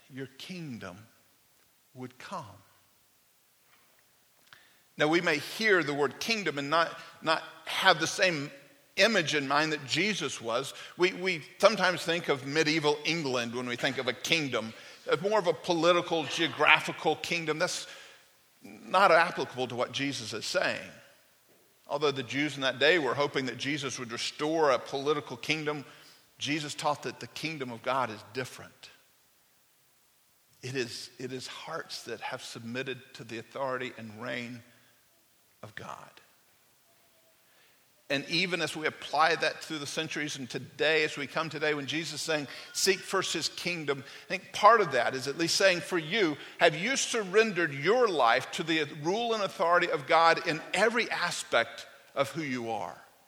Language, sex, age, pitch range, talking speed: English, male, 50-69, 130-175 Hz, 160 wpm